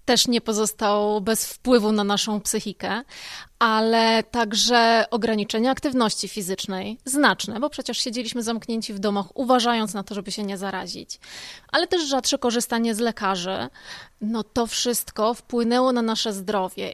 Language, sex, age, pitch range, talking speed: Polish, female, 20-39, 210-245 Hz, 140 wpm